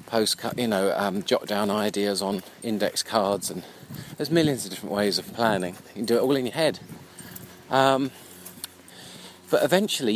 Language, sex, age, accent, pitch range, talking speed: English, male, 40-59, British, 100-135 Hz, 170 wpm